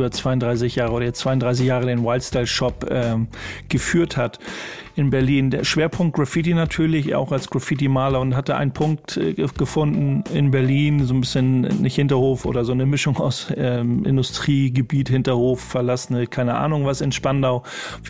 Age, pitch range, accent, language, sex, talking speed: 40-59, 125-150 Hz, German, German, male, 155 wpm